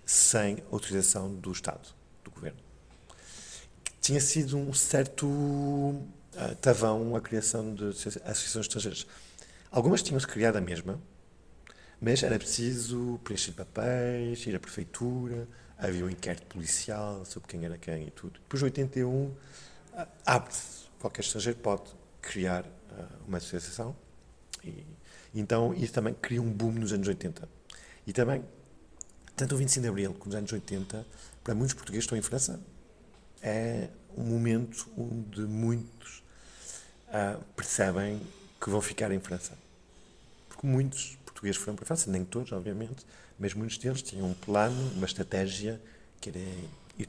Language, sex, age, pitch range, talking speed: Portuguese, male, 50-69, 95-120 Hz, 145 wpm